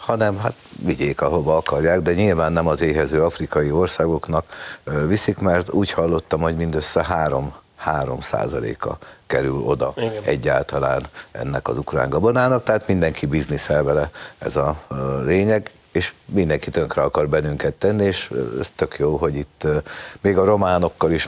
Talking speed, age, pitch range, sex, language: 140 wpm, 60-79, 75-105 Hz, male, Hungarian